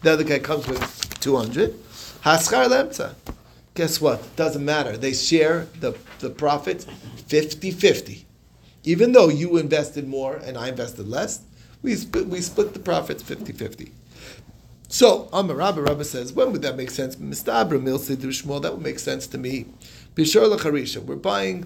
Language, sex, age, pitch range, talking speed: English, male, 40-59, 120-160 Hz, 145 wpm